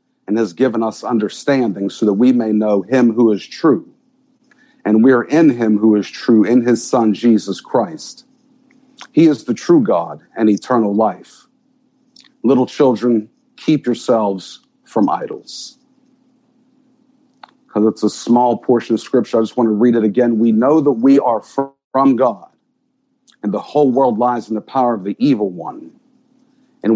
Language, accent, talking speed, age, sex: English, American, 165 wpm, 50-69, male